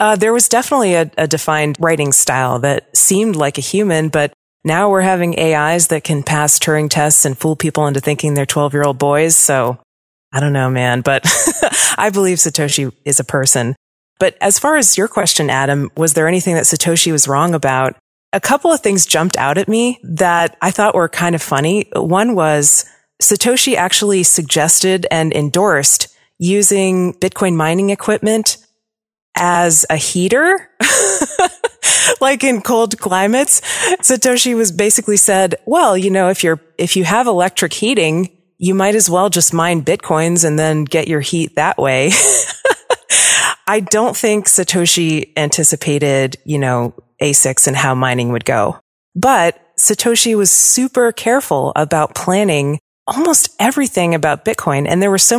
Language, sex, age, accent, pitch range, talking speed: English, female, 30-49, American, 150-210 Hz, 160 wpm